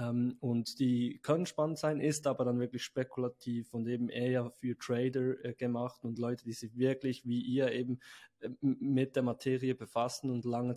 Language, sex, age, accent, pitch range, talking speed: German, male, 20-39, German, 115-130 Hz, 180 wpm